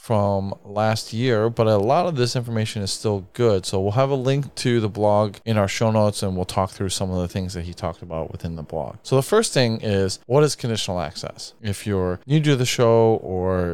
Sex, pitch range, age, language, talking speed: male, 95-115 Hz, 20-39, English, 240 wpm